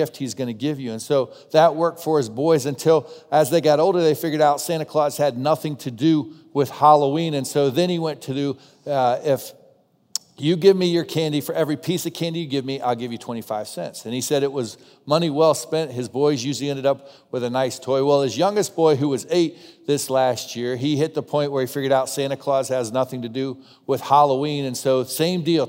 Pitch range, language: 135-175 Hz, English